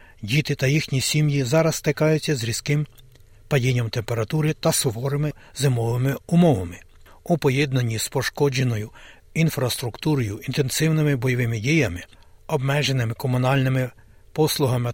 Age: 60-79